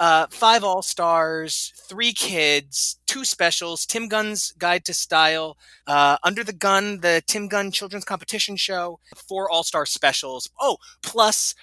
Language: English